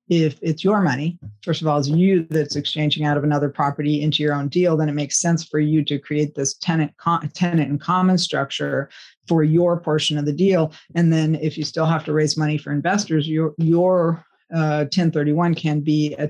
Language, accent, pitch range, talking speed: English, American, 145-165 Hz, 215 wpm